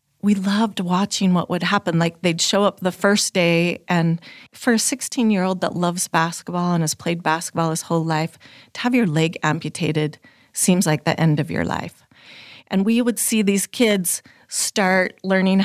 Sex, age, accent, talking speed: female, 30-49, American, 180 wpm